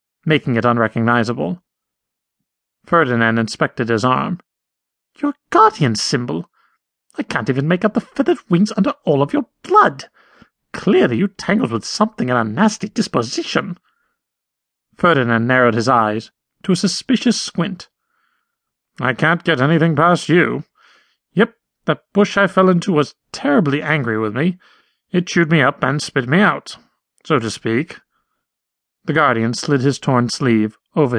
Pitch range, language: 125-200 Hz, English